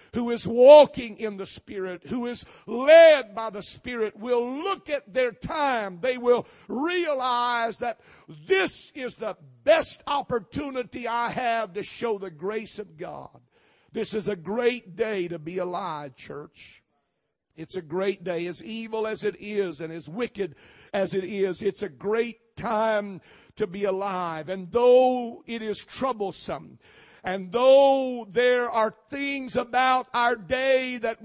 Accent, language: American, English